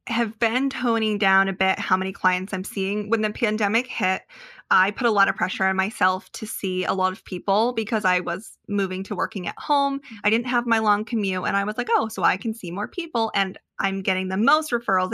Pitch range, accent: 185-225 Hz, American